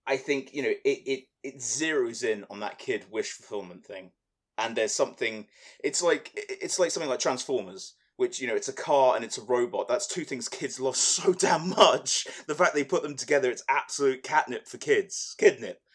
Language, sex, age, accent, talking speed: English, male, 20-39, British, 205 wpm